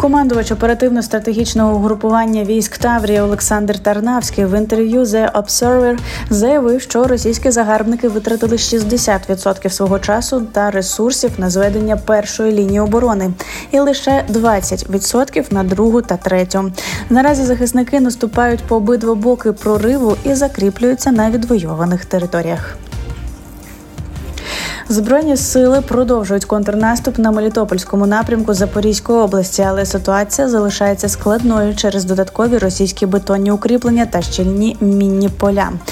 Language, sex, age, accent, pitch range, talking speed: Ukrainian, female, 20-39, native, 195-230 Hz, 110 wpm